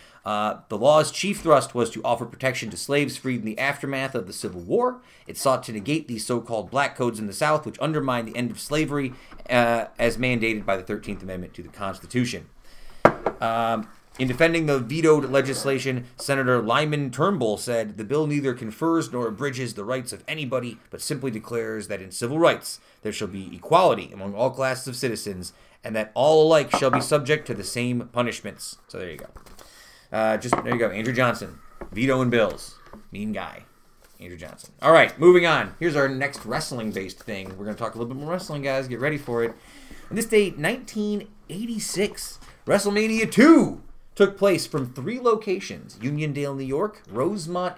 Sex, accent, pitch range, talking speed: male, American, 115-150 Hz, 185 wpm